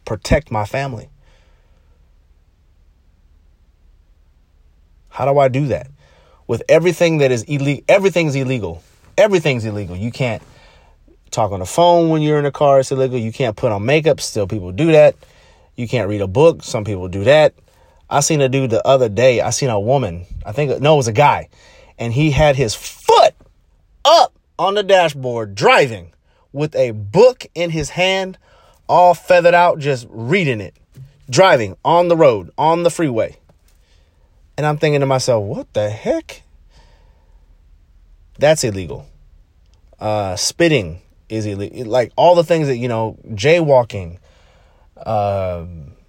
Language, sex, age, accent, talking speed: English, male, 30-49, American, 155 wpm